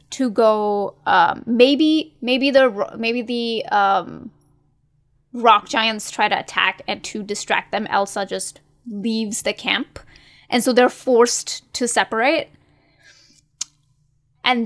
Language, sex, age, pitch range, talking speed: English, female, 10-29, 205-245 Hz, 125 wpm